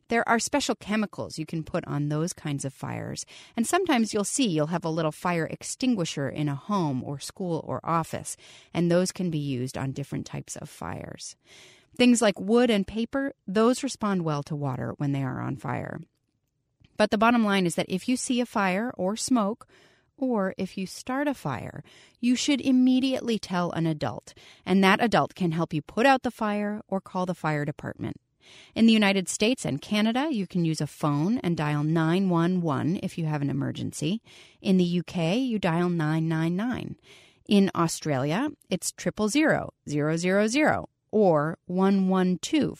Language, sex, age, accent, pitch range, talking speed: English, female, 30-49, American, 150-215 Hz, 175 wpm